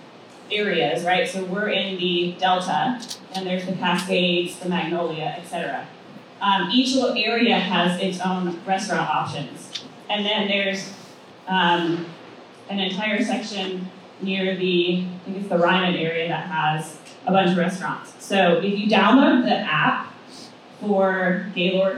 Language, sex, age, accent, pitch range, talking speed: English, female, 20-39, American, 180-235 Hz, 140 wpm